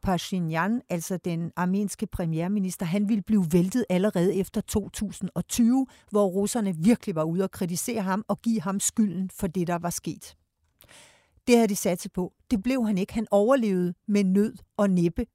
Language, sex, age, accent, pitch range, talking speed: Danish, female, 60-79, native, 180-230 Hz, 175 wpm